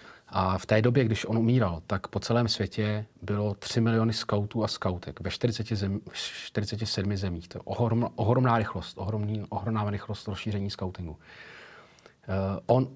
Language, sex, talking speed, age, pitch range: Czech, male, 155 wpm, 40-59, 100-115 Hz